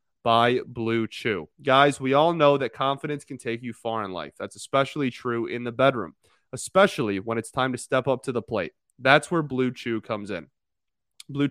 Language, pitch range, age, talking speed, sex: English, 115-150 Hz, 30-49, 200 wpm, male